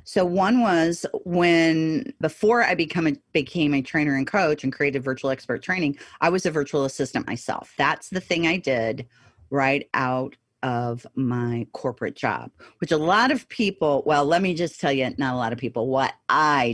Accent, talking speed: American, 185 wpm